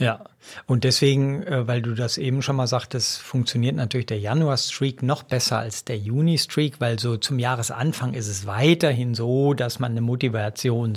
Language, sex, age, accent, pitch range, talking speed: German, male, 50-69, German, 125-155 Hz, 170 wpm